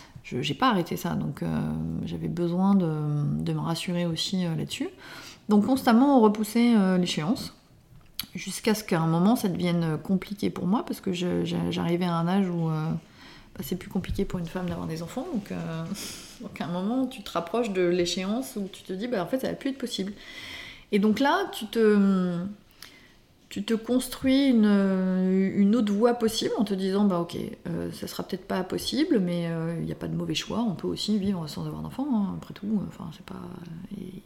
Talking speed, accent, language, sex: 210 wpm, French, French, female